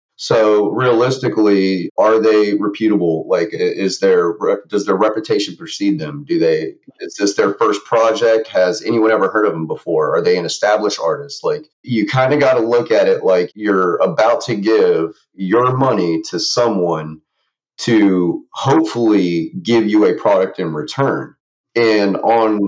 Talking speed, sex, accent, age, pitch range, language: 160 wpm, male, American, 30-49, 100-140 Hz, English